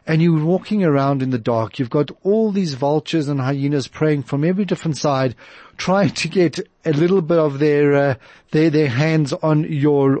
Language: English